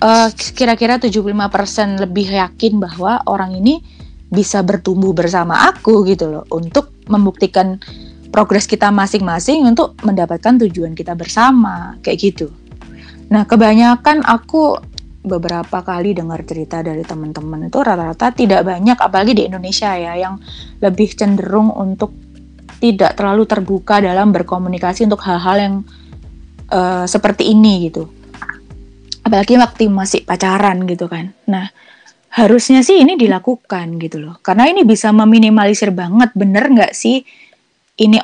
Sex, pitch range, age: female, 175-220 Hz, 20-39